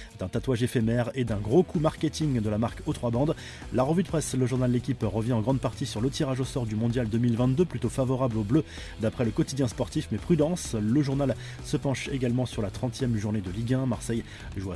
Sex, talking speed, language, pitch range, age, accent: male, 235 wpm, French, 115-135 Hz, 20-39, French